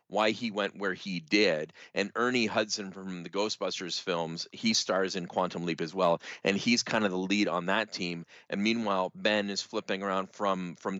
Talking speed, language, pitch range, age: 200 wpm, English, 90-110 Hz, 30-49